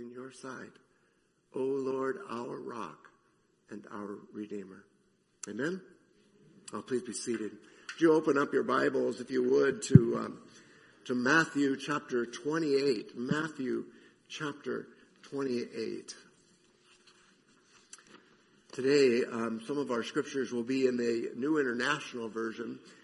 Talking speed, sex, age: 125 wpm, male, 60-79